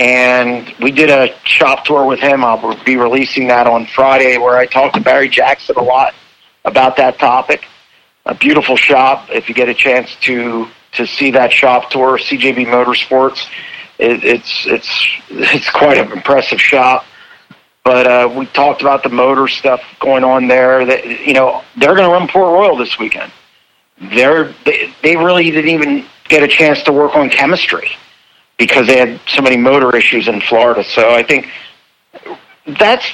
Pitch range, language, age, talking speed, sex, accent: 125-145 Hz, English, 40-59, 175 wpm, male, American